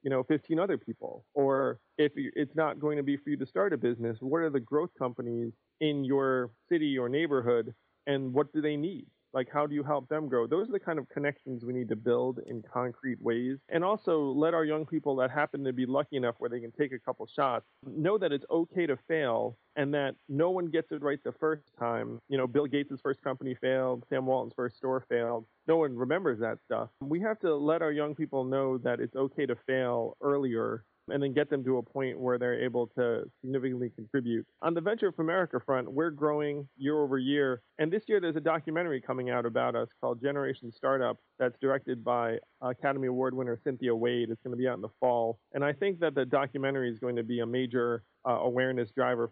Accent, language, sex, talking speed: American, English, male, 225 wpm